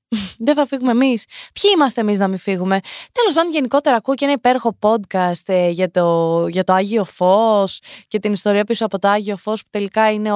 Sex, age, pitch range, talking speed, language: female, 20-39, 205-290 Hz, 195 wpm, Greek